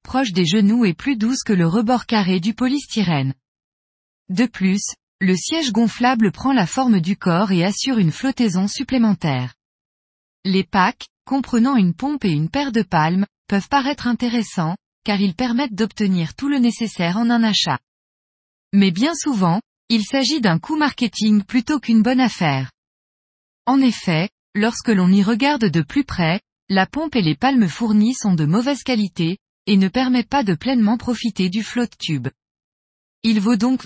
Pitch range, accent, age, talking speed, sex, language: 185-245 Hz, French, 20-39, 165 wpm, female, French